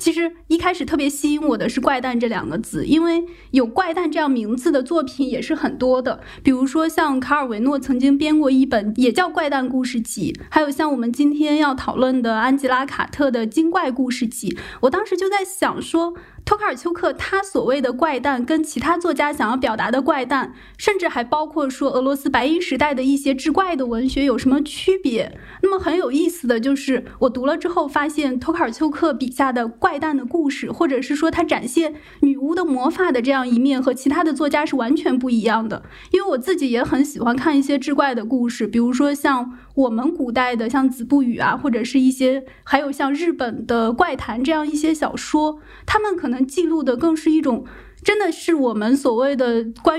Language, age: Chinese, 20-39